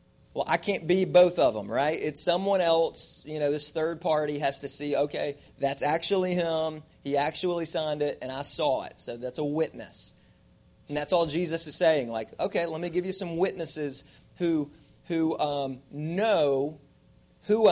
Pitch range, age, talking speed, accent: 145-180 Hz, 30-49, 185 wpm, American